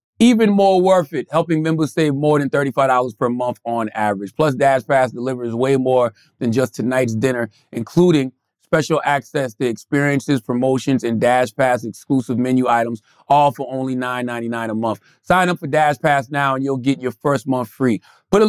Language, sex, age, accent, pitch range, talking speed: English, male, 30-49, American, 120-155 Hz, 185 wpm